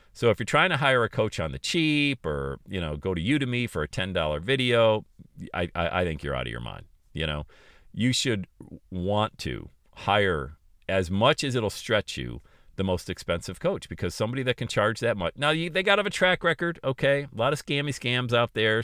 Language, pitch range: English, 85-130 Hz